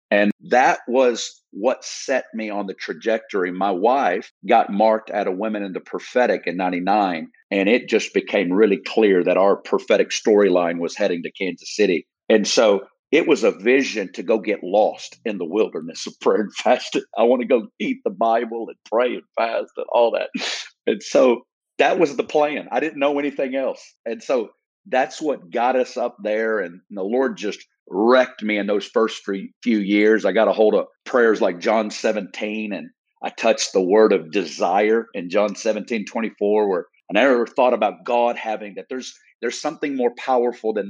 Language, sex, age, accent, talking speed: English, male, 50-69, American, 190 wpm